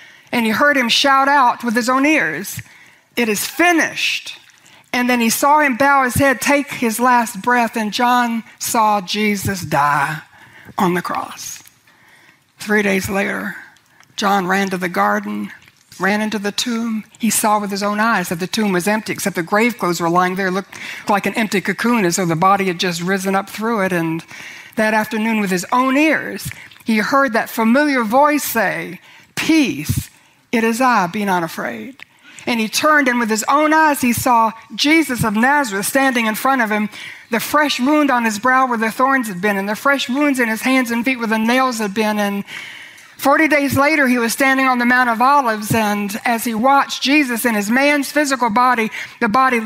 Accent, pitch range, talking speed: American, 210-275 Hz, 200 wpm